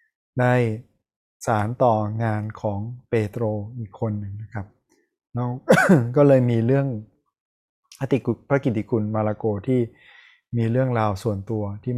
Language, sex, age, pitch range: Thai, male, 20-39, 110-130 Hz